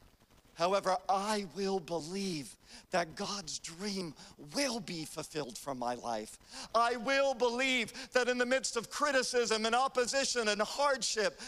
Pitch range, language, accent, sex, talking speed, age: 155-245 Hz, English, American, male, 135 wpm, 50-69